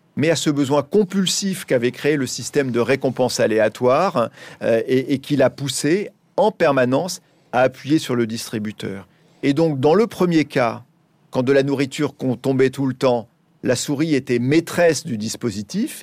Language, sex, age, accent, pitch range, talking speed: French, male, 40-59, French, 125-160 Hz, 170 wpm